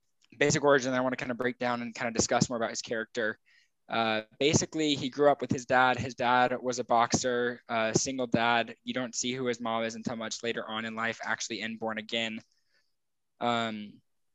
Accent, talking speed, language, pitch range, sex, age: American, 215 wpm, English, 115-130 Hz, male, 10-29